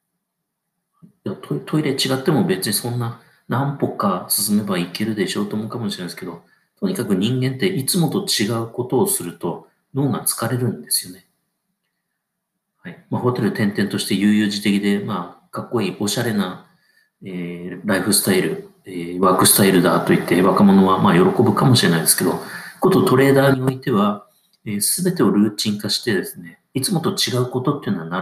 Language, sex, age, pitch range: Japanese, male, 40-59, 105-170 Hz